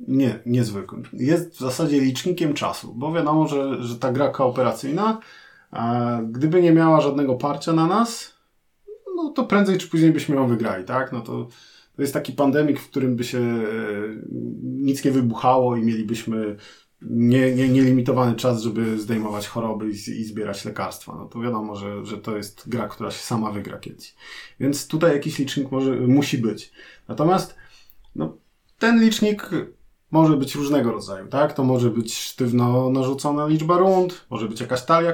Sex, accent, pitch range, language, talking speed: male, native, 115-145 Hz, Polish, 165 wpm